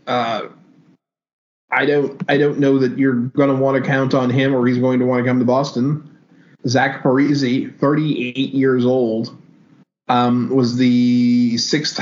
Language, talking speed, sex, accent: English, 160 wpm, male, American